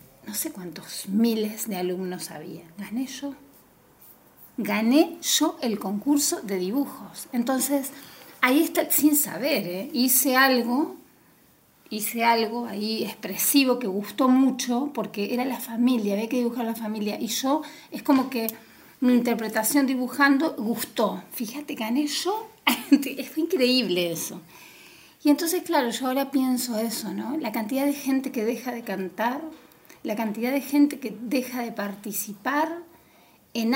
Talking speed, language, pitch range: 140 wpm, Spanish, 215-275 Hz